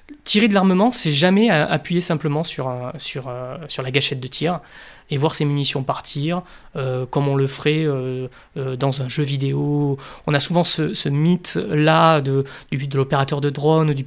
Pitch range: 145-175 Hz